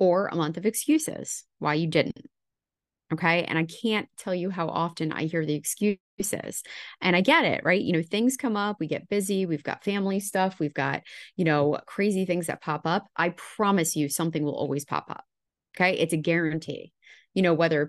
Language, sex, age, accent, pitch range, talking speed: English, female, 20-39, American, 160-210 Hz, 210 wpm